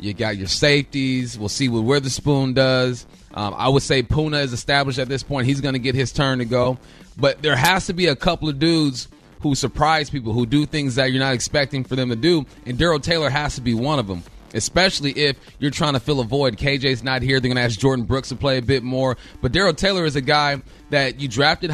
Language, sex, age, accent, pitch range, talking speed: English, male, 30-49, American, 130-155 Hz, 250 wpm